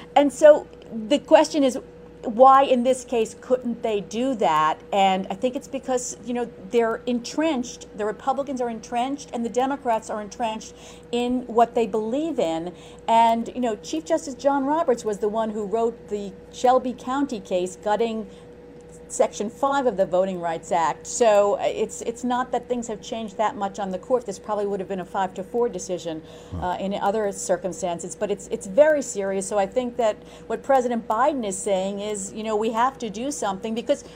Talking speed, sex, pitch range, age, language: 195 wpm, female, 195-250 Hz, 50-69, English